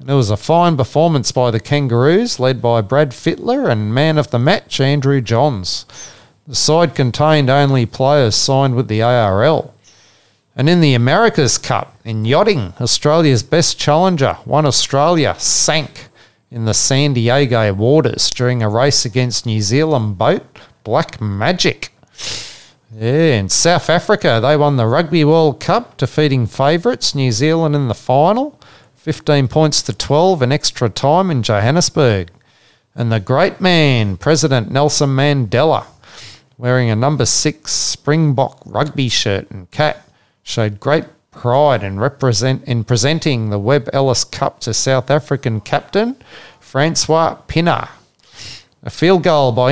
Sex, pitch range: male, 120-150 Hz